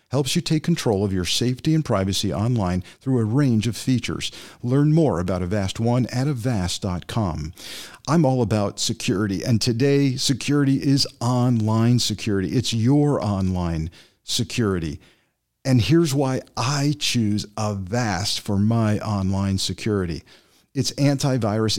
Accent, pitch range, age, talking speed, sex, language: American, 100-130 Hz, 50-69, 130 wpm, male, English